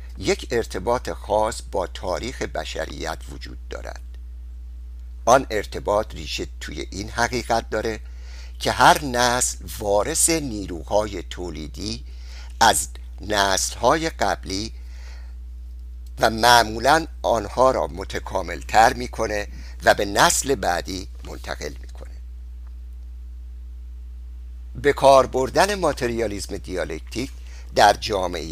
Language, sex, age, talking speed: Persian, male, 60-79, 90 wpm